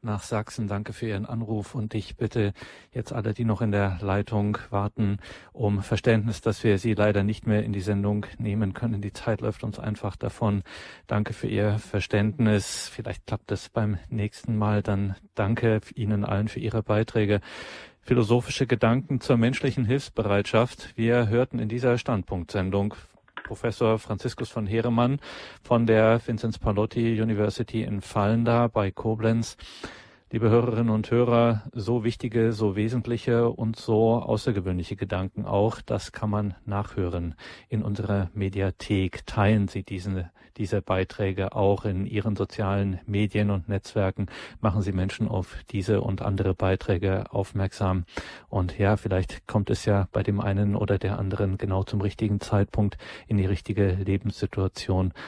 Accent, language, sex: German, German, male